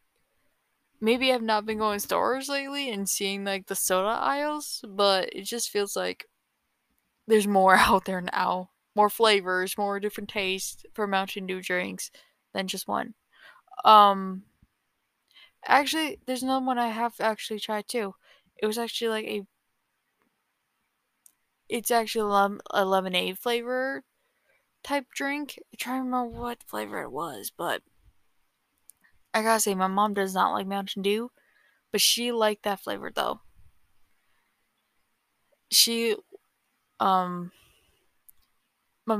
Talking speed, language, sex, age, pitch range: 130 wpm, English, female, 10-29, 195-240 Hz